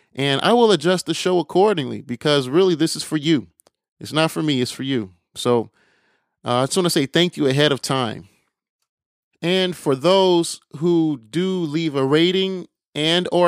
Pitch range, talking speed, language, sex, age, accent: 135-175 Hz, 185 wpm, English, male, 30-49, American